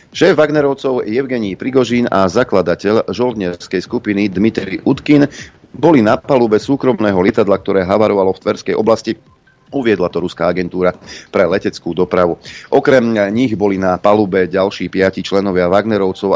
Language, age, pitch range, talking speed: Slovak, 40-59, 90-120 Hz, 130 wpm